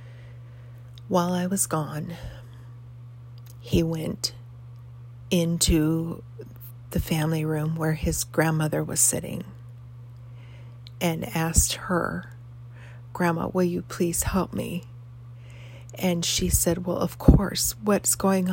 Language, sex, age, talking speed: English, female, 40-59, 105 wpm